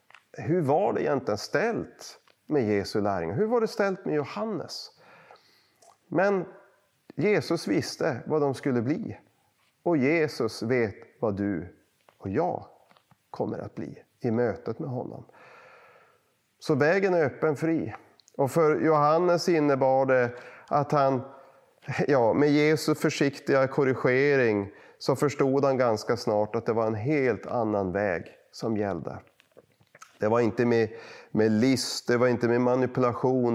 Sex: male